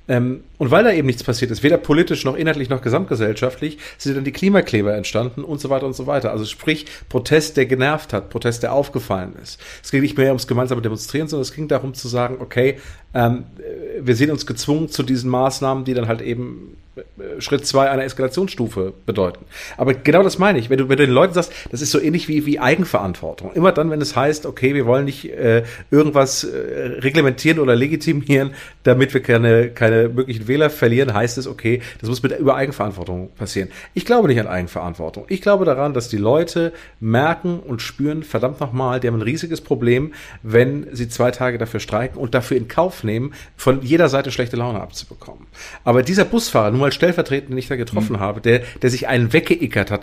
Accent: German